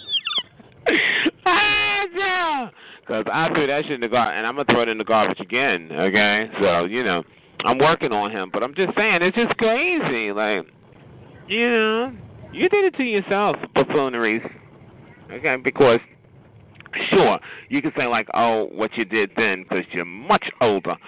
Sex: male